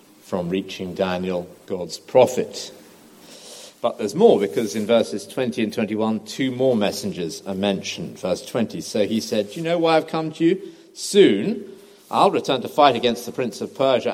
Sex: male